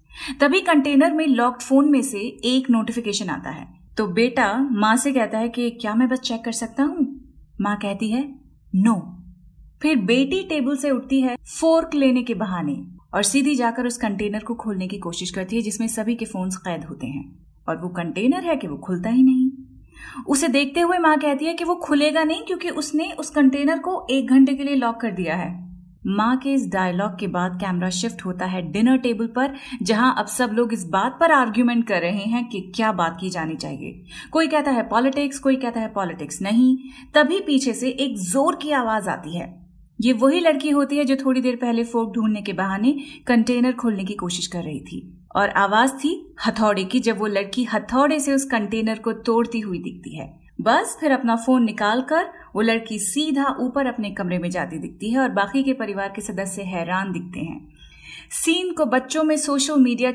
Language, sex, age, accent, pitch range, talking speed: Hindi, female, 30-49, native, 205-270 Hz, 170 wpm